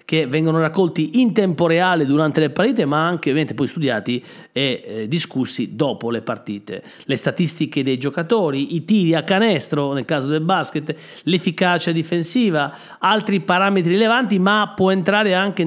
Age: 40-59